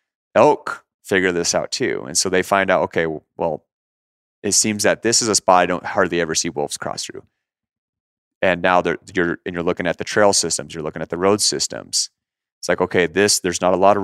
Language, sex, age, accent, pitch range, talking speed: English, male, 30-49, American, 85-100 Hz, 225 wpm